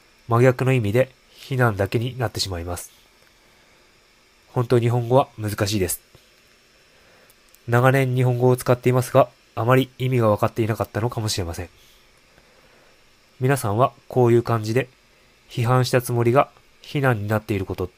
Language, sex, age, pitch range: Japanese, male, 20-39, 105-125 Hz